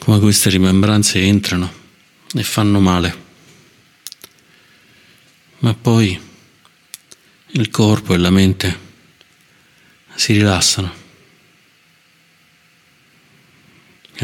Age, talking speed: 50-69, 70 wpm